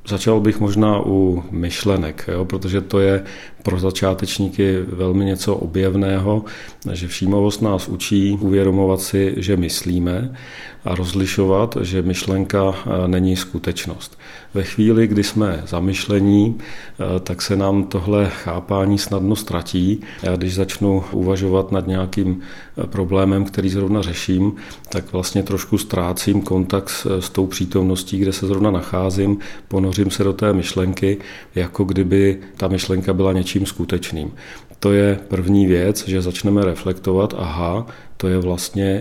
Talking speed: 130 wpm